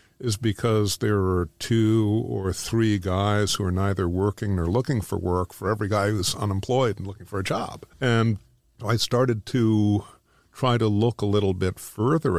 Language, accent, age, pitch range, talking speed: English, American, 50-69, 95-110 Hz, 180 wpm